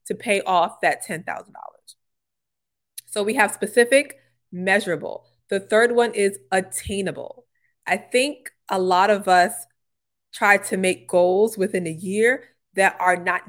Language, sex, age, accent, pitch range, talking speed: English, female, 20-39, American, 180-215 Hz, 140 wpm